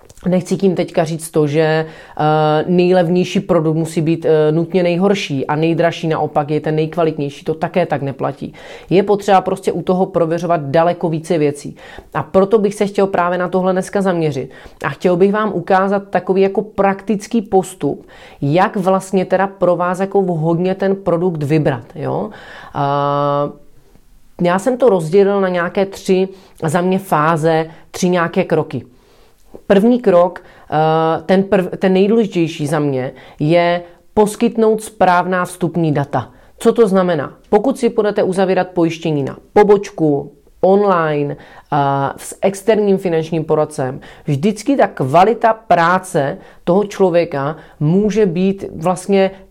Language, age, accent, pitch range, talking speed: Czech, 30-49, native, 160-195 Hz, 140 wpm